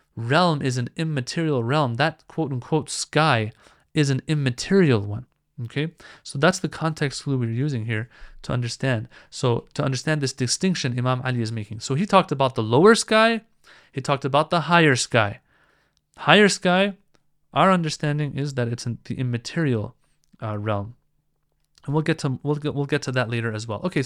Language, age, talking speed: English, 30-49, 175 wpm